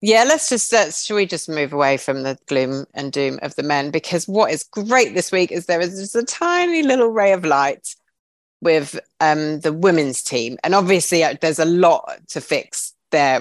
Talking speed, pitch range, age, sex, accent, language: 205 wpm, 140-200 Hz, 30-49, female, British, English